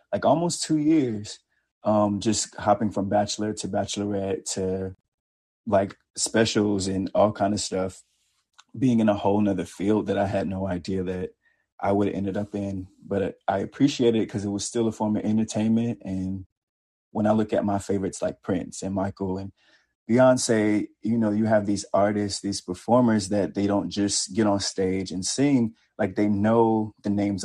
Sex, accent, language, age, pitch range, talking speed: male, American, English, 20-39, 95-105 Hz, 185 wpm